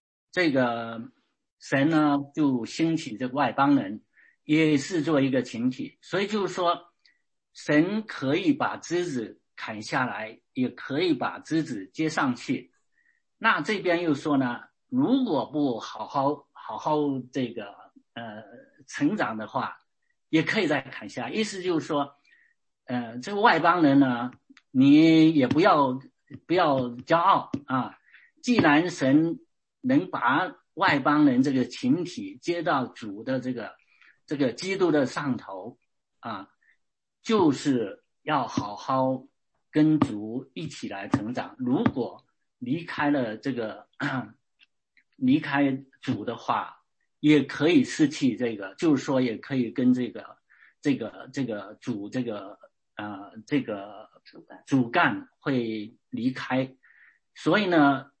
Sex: male